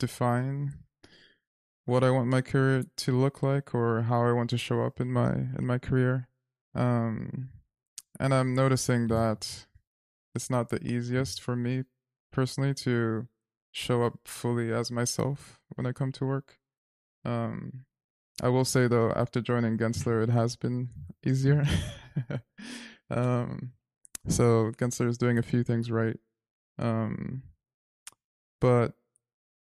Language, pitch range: English, 115-130 Hz